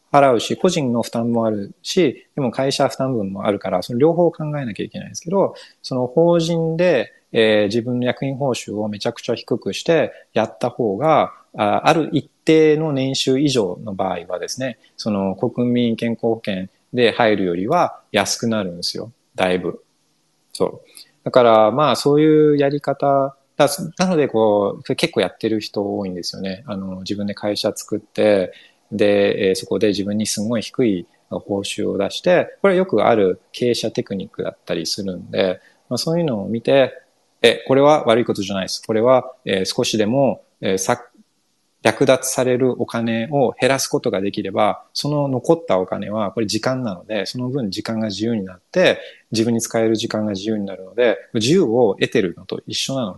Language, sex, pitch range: Japanese, male, 105-140 Hz